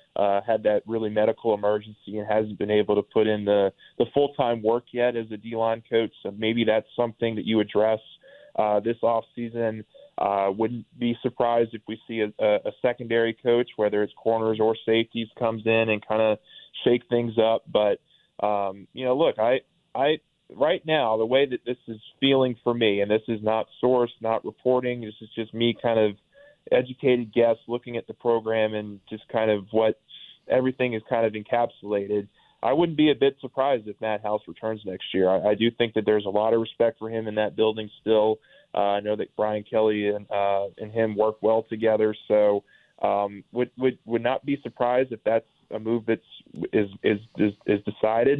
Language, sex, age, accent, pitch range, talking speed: English, male, 20-39, American, 105-120 Hz, 200 wpm